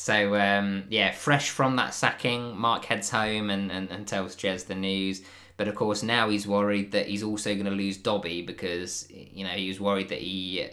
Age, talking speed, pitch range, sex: 20-39, 215 wpm, 95-105 Hz, male